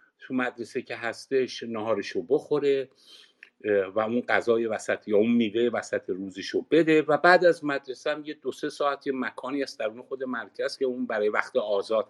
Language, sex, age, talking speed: Persian, male, 50-69, 170 wpm